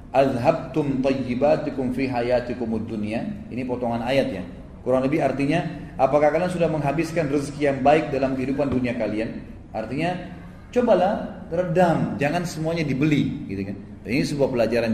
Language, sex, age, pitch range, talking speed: Indonesian, male, 30-49, 115-175 Hz, 120 wpm